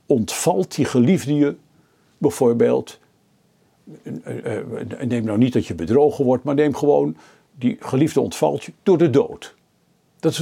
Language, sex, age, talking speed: Dutch, male, 60-79, 140 wpm